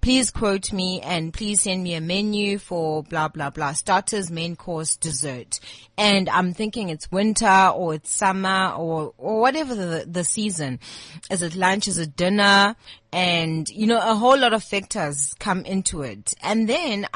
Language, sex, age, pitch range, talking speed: English, female, 30-49, 165-220 Hz, 175 wpm